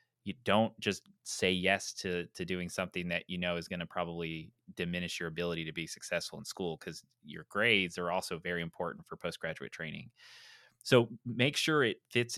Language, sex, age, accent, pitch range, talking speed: English, male, 30-49, American, 90-115 Hz, 190 wpm